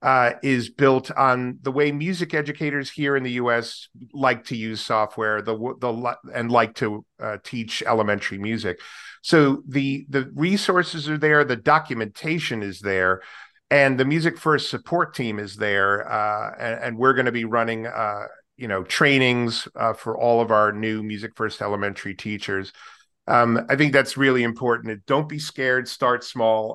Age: 40-59